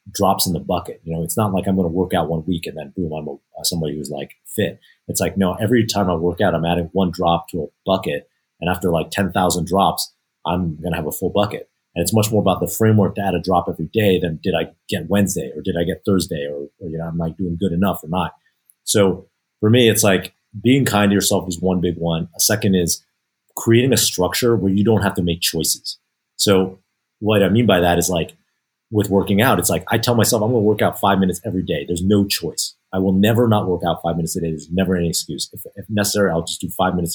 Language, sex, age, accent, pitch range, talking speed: English, male, 30-49, American, 85-105 Hz, 260 wpm